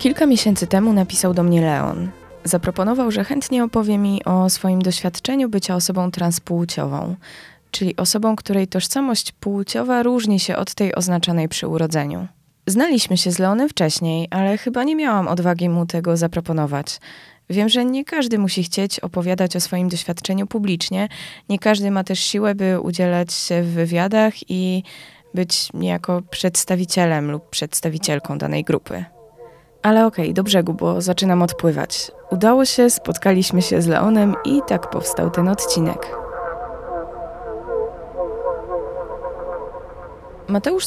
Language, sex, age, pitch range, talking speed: Polish, female, 20-39, 175-220 Hz, 135 wpm